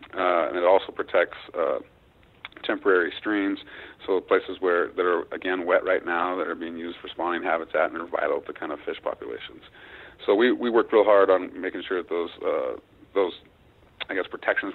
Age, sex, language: 40-59, male, English